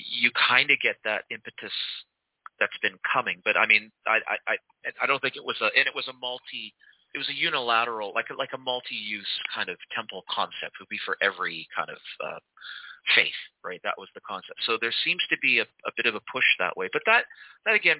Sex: male